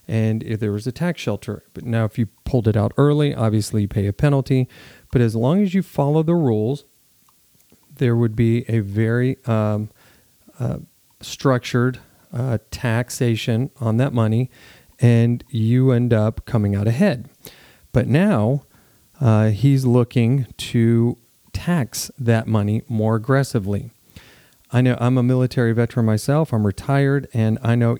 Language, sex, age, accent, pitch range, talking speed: English, male, 40-59, American, 110-130 Hz, 150 wpm